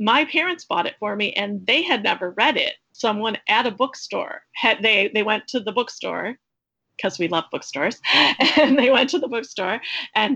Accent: American